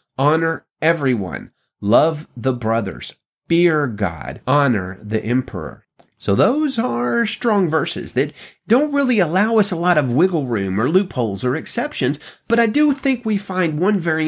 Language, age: English, 30-49